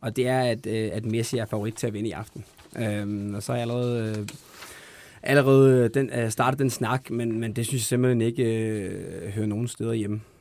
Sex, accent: male, native